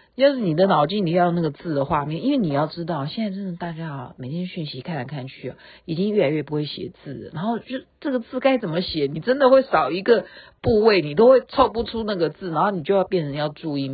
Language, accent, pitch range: Chinese, native, 155-235 Hz